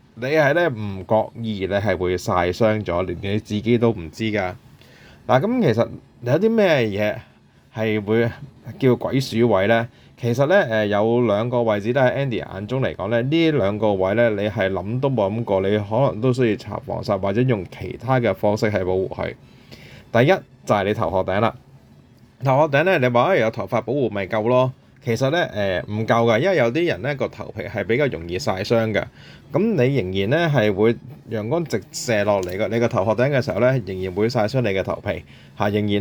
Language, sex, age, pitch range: Chinese, male, 20-39, 100-125 Hz